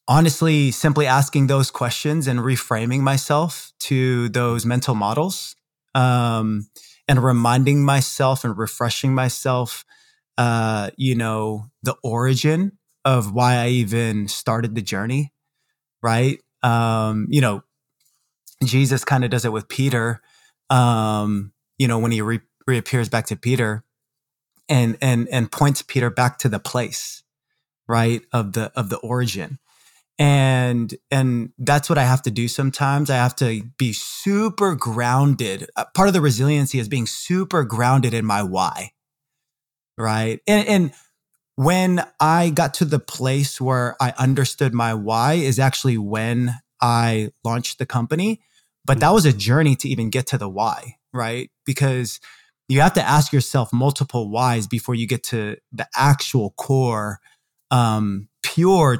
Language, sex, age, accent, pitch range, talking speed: English, male, 20-39, American, 115-140 Hz, 145 wpm